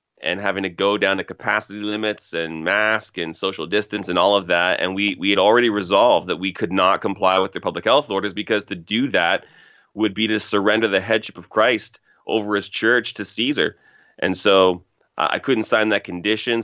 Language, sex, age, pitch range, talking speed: English, male, 30-49, 90-105 Hz, 205 wpm